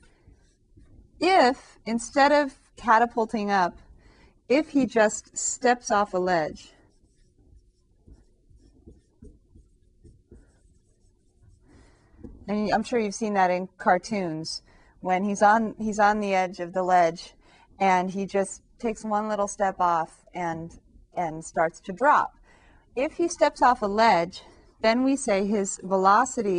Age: 30-49